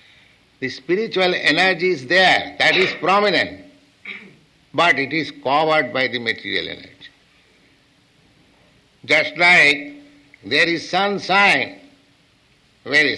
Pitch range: 135-165 Hz